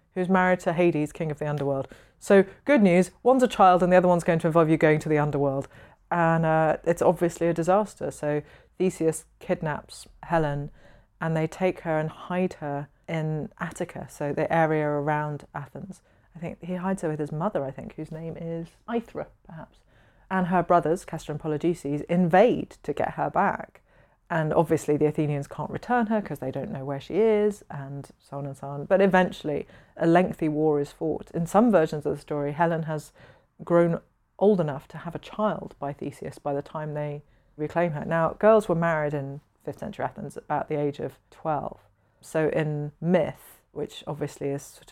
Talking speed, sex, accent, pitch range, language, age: 195 wpm, female, British, 150-180 Hz, English, 30-49